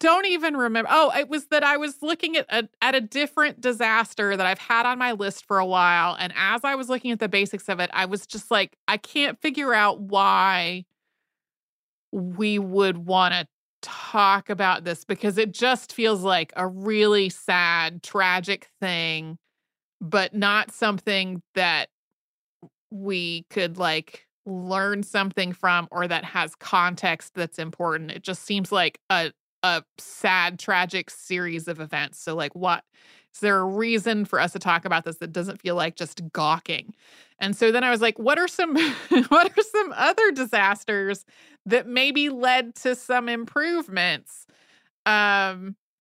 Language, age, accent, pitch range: English, 30-49, American, 185-240 Hz